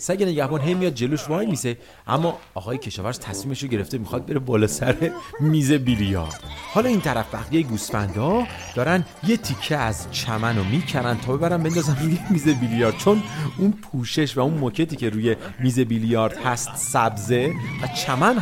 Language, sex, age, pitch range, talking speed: English, male, 40-59, 120-175 Hz, 155 wpm